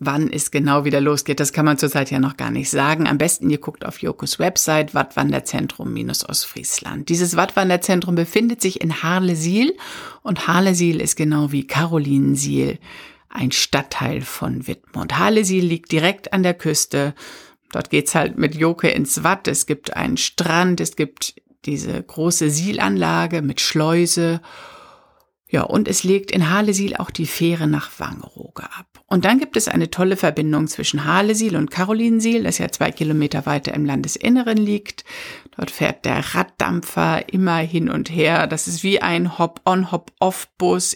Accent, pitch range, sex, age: German, 150-190 Hz, female, 60-79